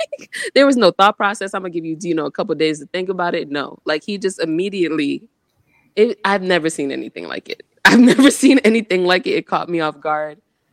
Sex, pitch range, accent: female, 160-250 Hz, American